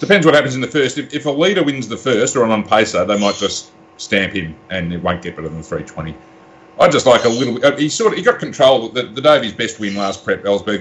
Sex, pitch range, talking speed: male, 100-120 Hz, 285 wpm